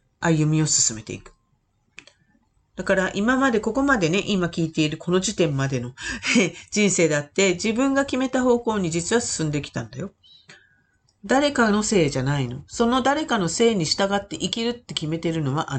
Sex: female